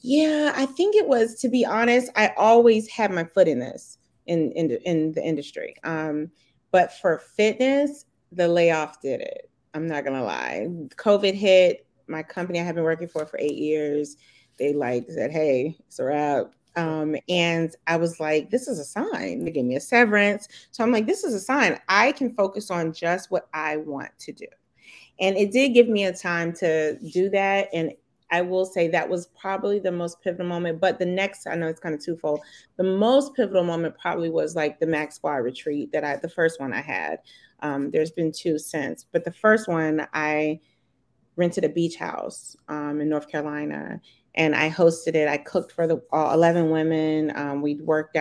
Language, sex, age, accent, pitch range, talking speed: English, female, 30-49, American, 155-200 Hz, 205 wpm